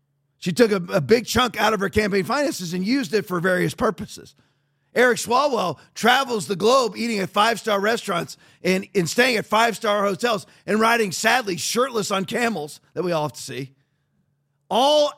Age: 40-59